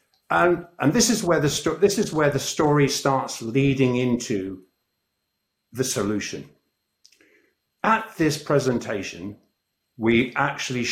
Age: 50-69